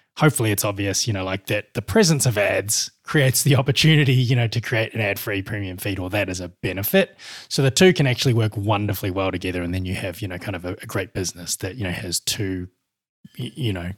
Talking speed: 235 wpm